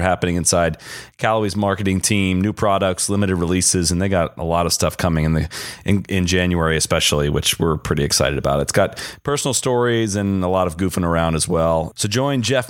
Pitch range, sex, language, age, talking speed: 90-110 Hz, male, English, 30-49, 205 wpm